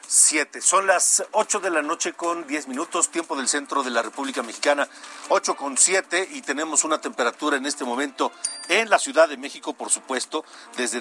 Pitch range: 130-170 Hz